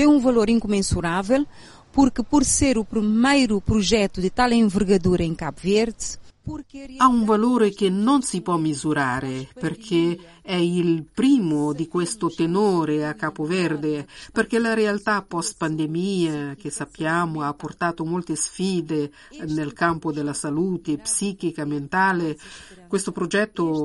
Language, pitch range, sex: Italian, 165-220 Hz, female